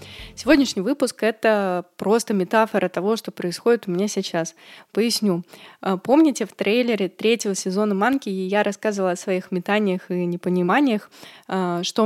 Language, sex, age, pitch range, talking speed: Russian, female, 20-39, 180-215 Hz, 130 wpm